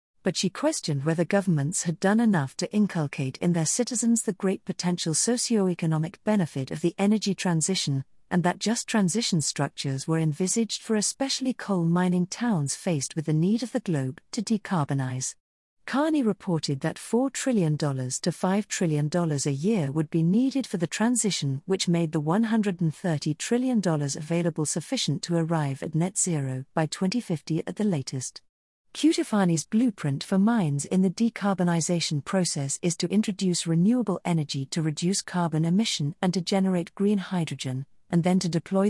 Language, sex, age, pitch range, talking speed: English, female, 40-59, 160-205 Hz, 155 wpm